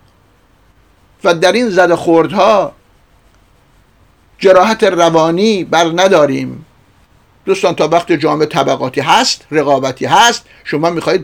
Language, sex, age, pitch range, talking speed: Persian, male, 50-69, 150-230 Hz, 95 wpm